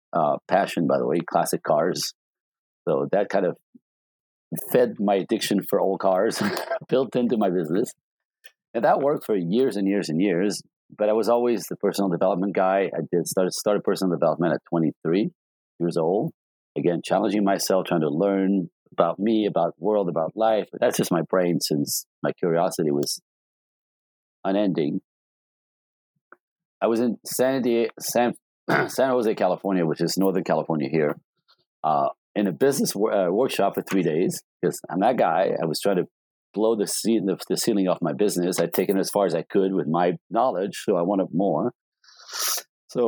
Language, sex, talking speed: English, male, 180 wpm